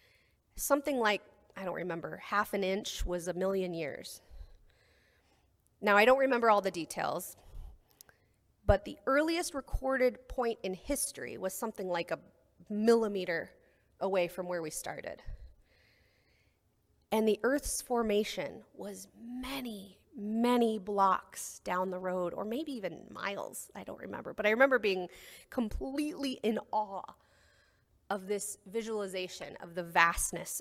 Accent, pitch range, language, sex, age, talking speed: American, 190-250 Hz, English, female, 30-49, 130 wpm